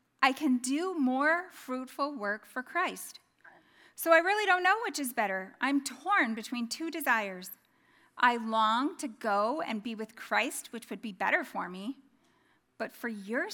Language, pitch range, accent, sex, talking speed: English, 220-310 Hz, American, female, 170 wpm